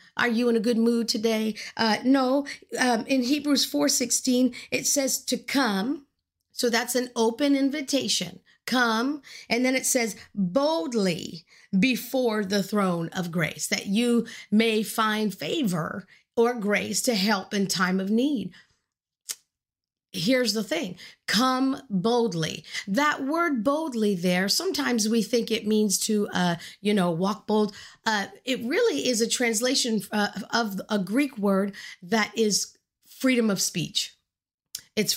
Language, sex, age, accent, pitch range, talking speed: English, female, 50-69, American, 205-250 Hz, 145 wpm